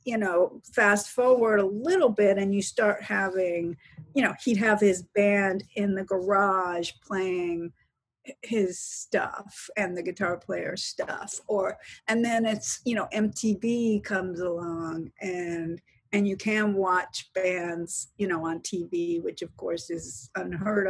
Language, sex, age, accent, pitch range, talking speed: English, female, 50-69, American, 175-215 Hz, 150 wpm